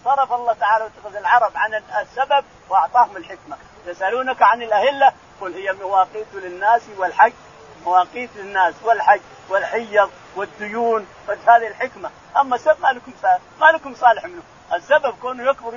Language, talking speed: Arabic, 130 wpm